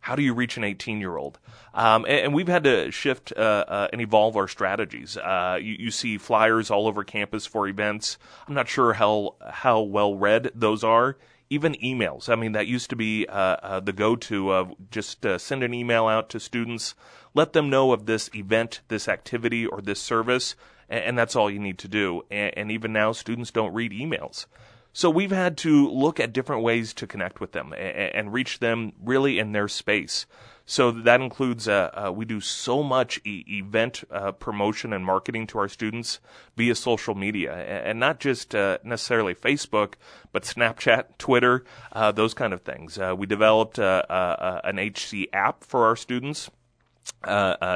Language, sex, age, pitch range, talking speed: English, male, 30-49, 105-125 Hz, 190 wpm